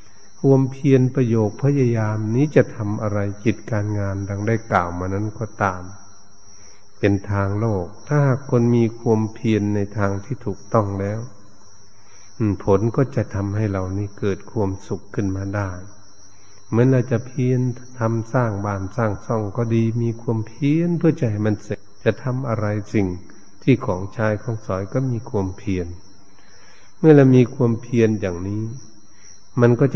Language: Thai